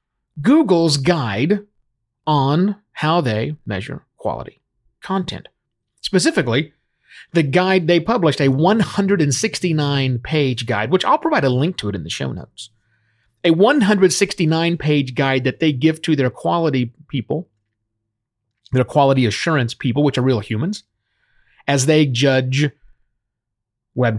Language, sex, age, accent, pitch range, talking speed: English, male, 40-59, American, 120-180 Hz, 120 wpm